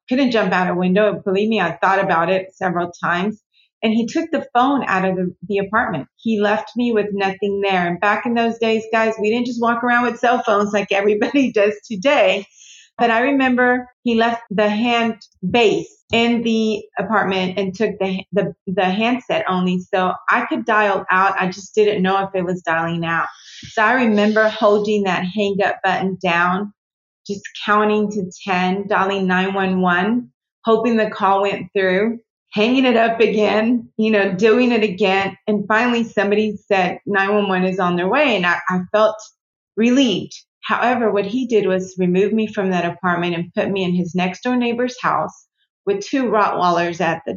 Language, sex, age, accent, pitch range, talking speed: English, female, 30-49, American, 190-225 Hz, 185 wpm